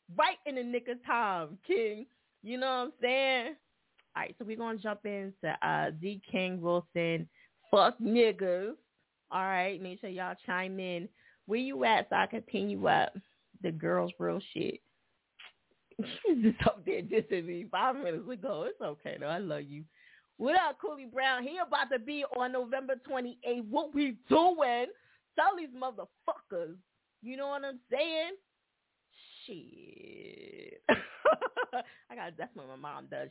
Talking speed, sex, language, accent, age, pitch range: 160 wpm, female, English, American, 20-39, 190-270 Hz